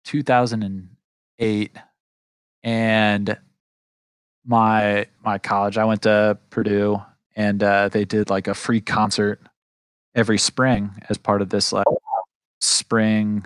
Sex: male